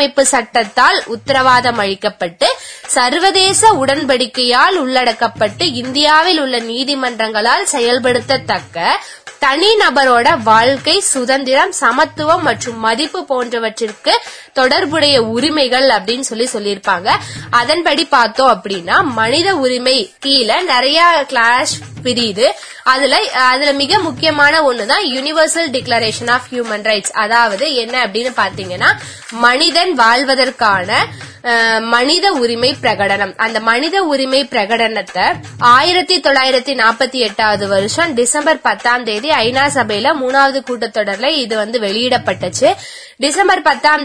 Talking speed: 85 wpm